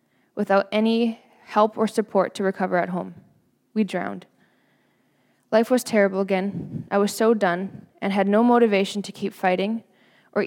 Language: English